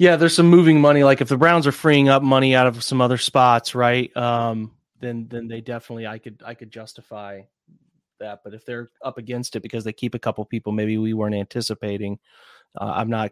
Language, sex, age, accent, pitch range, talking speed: English, male, 30-49, American, 110-130 Hz, 220 wpm